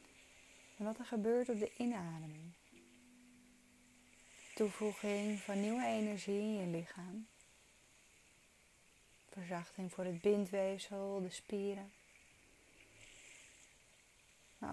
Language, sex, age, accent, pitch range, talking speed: Dutch, female, 20-39, Dutch, 180-225 Hz, 85 wpm